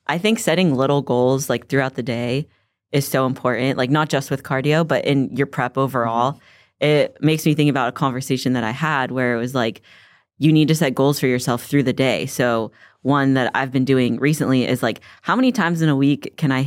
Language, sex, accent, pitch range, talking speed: English, female, American, 125-145 Hz, 225 wpm